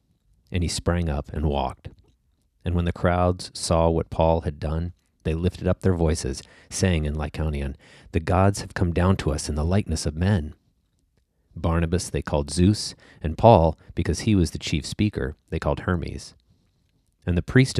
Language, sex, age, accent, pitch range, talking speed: English, male, 40-59, American, 80-105 Hz, 180 wpm